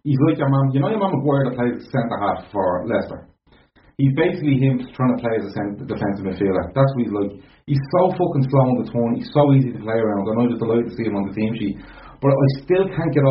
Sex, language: male, English